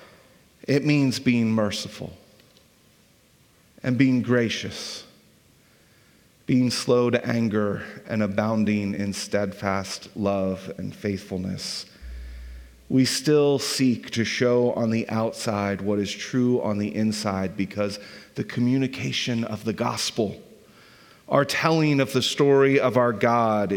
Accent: American